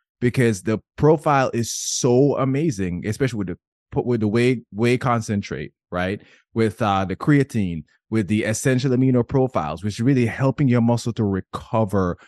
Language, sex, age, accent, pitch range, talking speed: English, male, 20-39, American, 100-125 Hz, 155 wpm